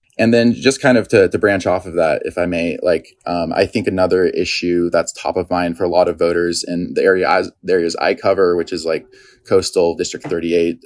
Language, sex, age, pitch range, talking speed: English, male, 20-39, 85-90 Hz, 240 wpm